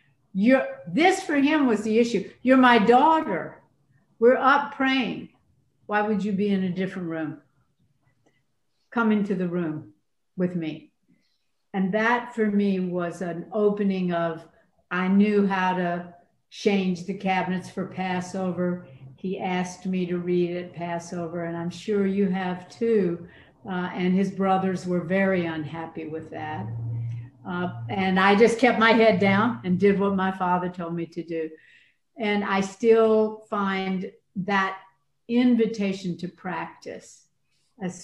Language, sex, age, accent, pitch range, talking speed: English, female, 60-79, American, 170-205 Hz, 145 wpm